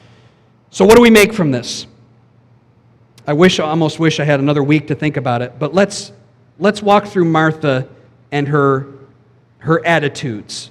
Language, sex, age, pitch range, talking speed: English, male, 50-69, 140-205 Hz, 170 wpm